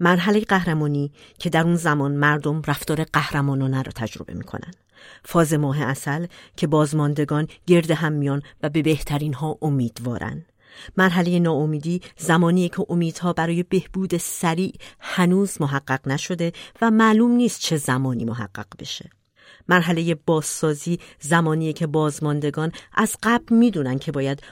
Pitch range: 140-190 Hz